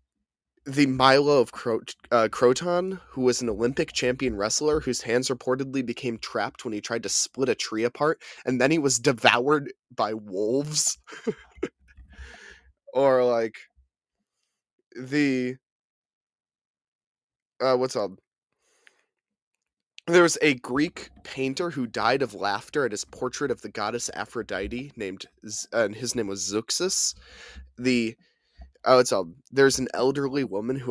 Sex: male